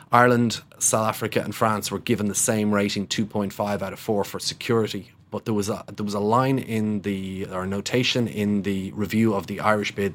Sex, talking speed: male, 195 wpm